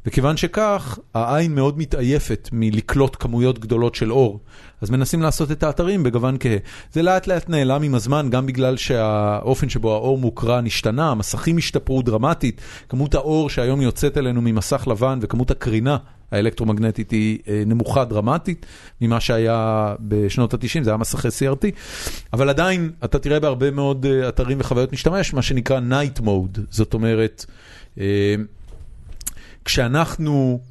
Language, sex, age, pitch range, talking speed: Hebrew, male, 40-59, 110-140 Hz, 135 wpm